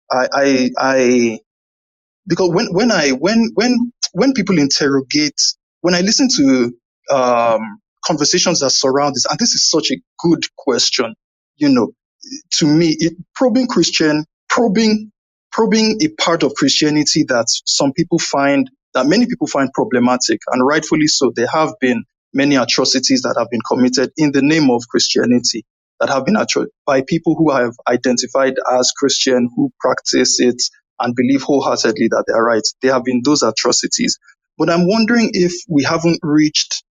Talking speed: 160 wpm